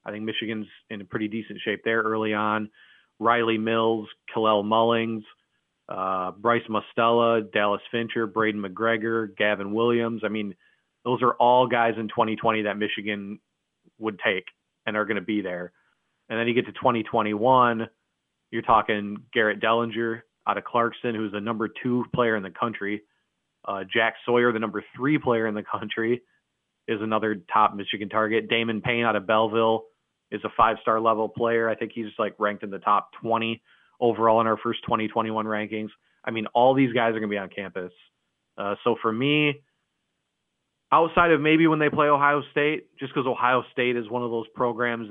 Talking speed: 180 wpm